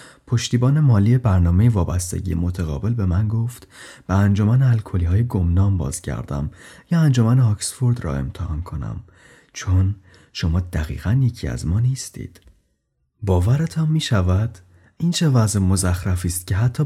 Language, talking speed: Persian, 130 wpm